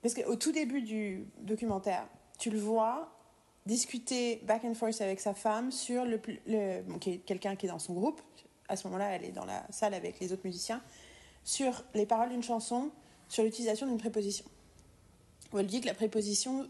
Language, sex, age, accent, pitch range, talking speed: French, female, 30-49, French, 195-240 Hz, 200 wpm